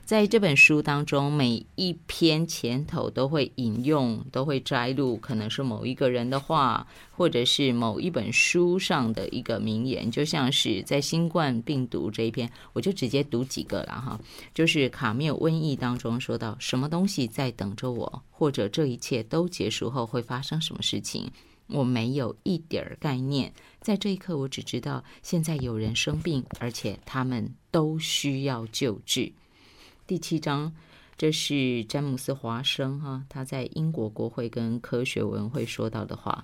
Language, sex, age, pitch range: Chinese, female, 20-39, 115-145 Hz